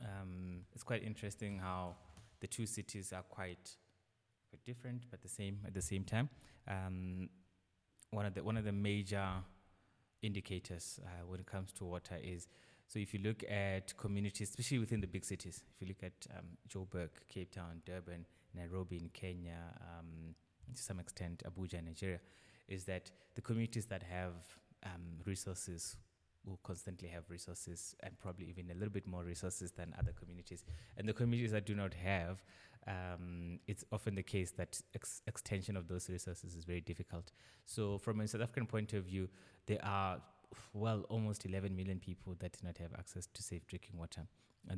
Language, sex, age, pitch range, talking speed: English, male, 20-39, 90-105 Hz, 180 wpm